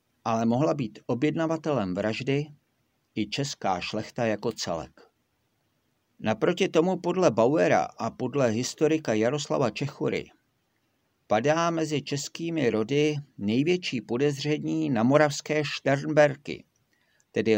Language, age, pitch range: Czech, 50-69, 115-150 Hz